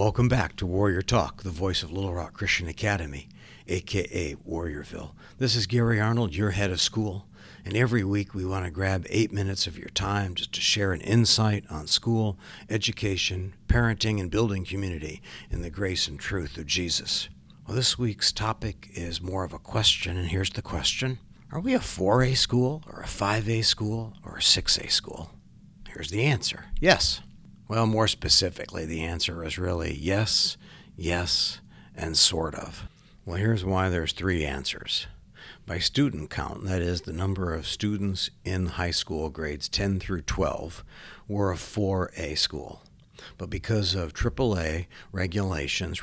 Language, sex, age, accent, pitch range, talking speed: English, male, 60-79, American, 85-105 Hz, 165 wpm